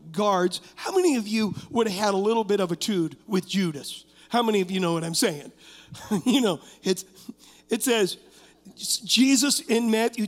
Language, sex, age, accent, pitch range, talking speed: English, male, 50-69, American, 195-255 Hz, 185 wpm